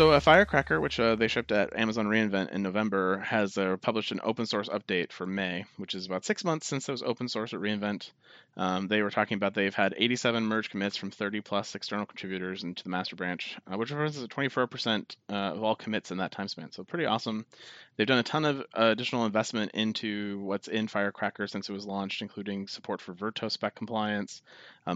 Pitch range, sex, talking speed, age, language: 100-115 Hz, male, 215 wpm, 30-49, English